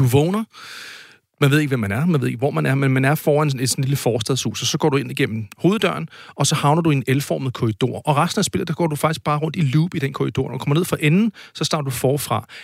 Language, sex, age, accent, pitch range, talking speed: Danish, male, 40-59, native, 120-150 Hz, 295 wpm